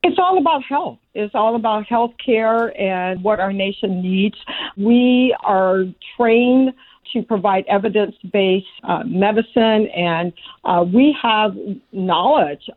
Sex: female